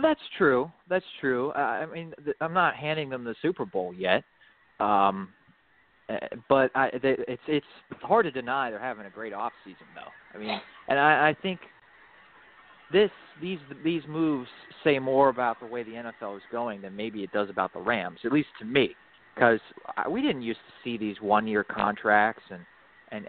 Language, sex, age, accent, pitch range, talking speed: English, male, 30-49, American, 115-150 Hz, 190 wpm